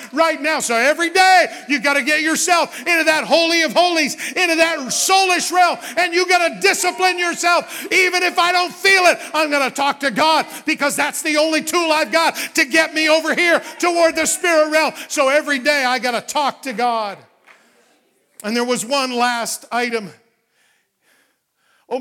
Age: 50-69